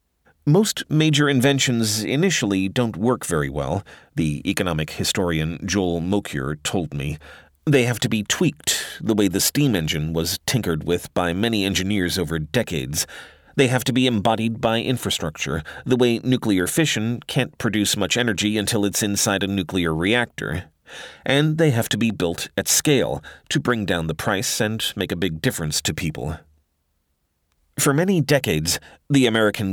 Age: 40-59